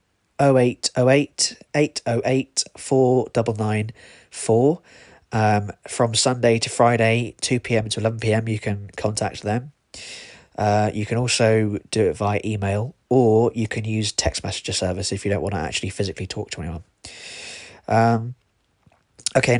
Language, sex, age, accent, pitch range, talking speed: English, male, 20-39, British, 105-125 Hz, 130 wpm